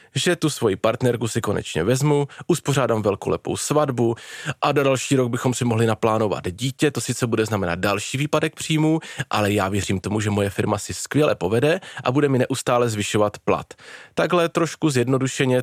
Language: Czech